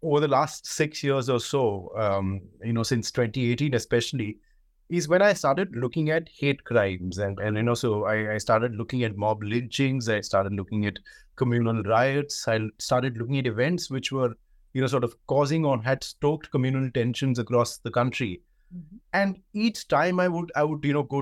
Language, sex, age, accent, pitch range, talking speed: English, male, 30-49, Indian, 120-155 Hz, 195 wpm